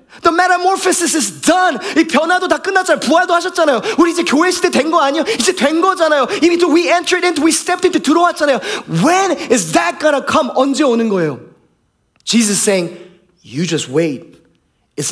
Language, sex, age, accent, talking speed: English, male, 30-49, Korean, 170 wpm